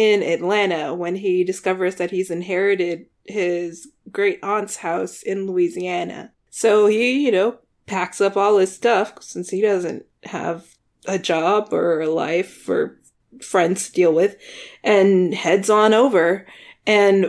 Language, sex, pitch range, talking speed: English, female, 180-220 Hz, 145 wpm